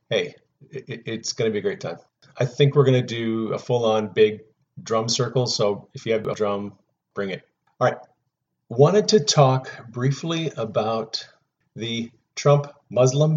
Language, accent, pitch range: English, American, 110-140 Hz